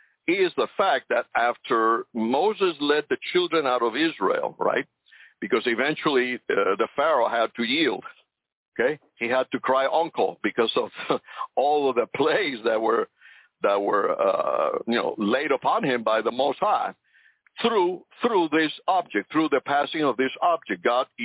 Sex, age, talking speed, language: male, 60-79, 165 wpm, English